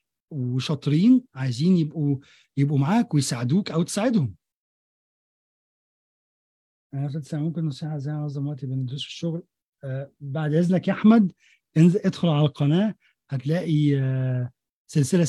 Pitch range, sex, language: 135-185 Hz, male, Arabic